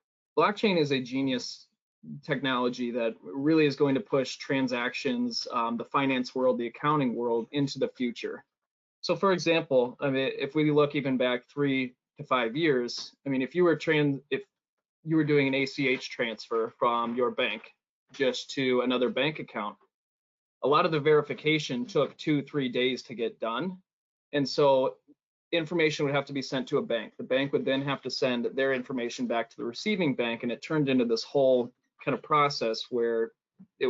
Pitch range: 125-155 Hz